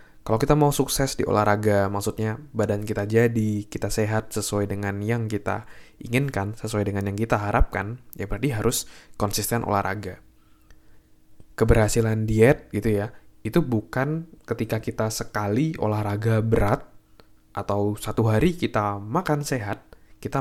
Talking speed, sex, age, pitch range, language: 130 wpm, male, 20-39, 105-120 Hz, Indonesian